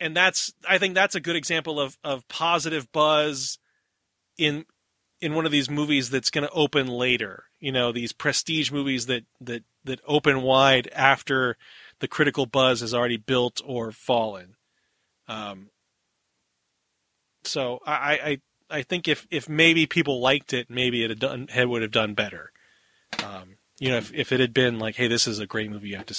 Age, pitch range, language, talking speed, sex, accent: 30-49, 120-150 Hz, English, 185 wpm, male, American